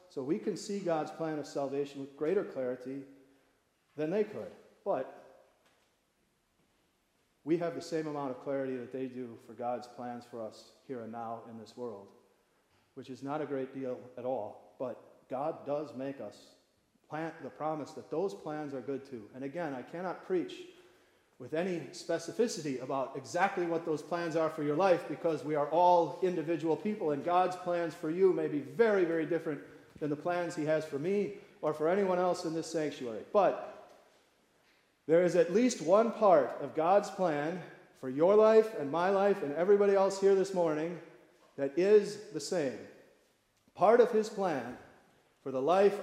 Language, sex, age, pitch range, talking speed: English, male, 40-59, 140-185 Hz, 180 wpm